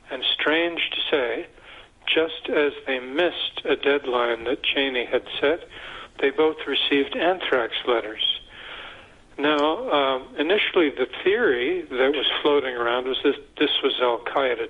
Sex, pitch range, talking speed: male, 130-180 Hz, 135 wpm